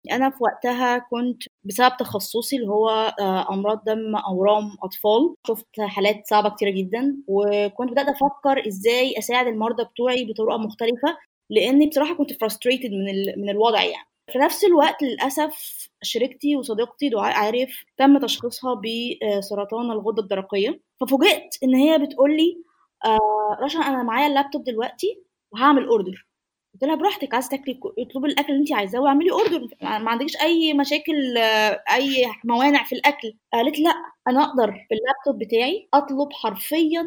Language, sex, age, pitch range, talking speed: Arabic, female, 20-39, 225-285 Hz, 140 wpm